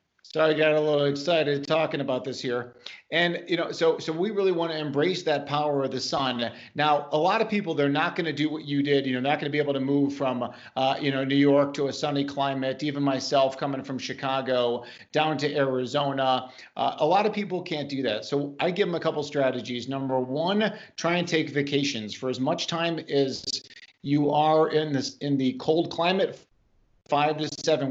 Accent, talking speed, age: American, 220 wpm, 40-59